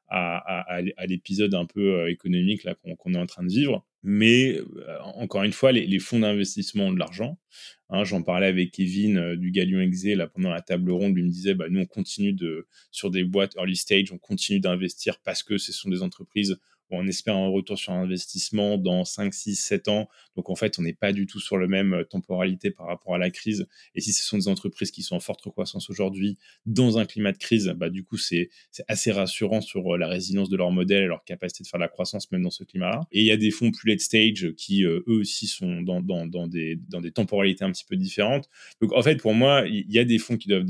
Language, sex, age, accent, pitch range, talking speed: French, male, 20-39, French, 90-115 Hz, 250 wpm